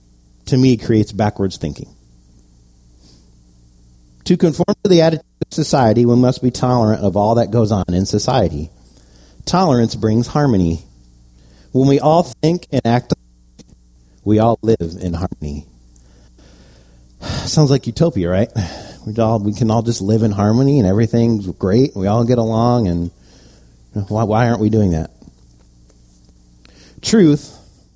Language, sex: English, male